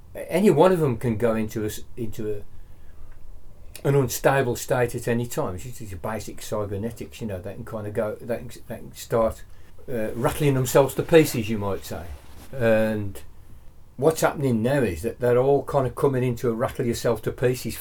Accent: British